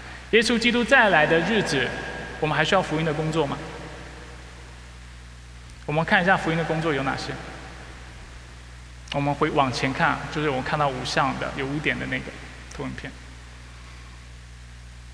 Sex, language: male, Chinese